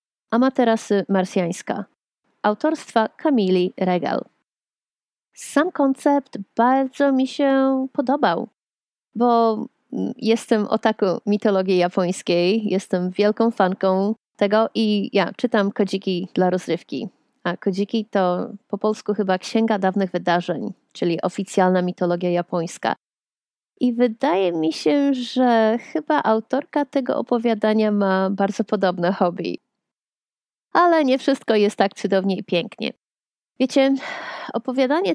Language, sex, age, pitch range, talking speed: Polish, female, 30-49, 190-250 Hz, 105 wpm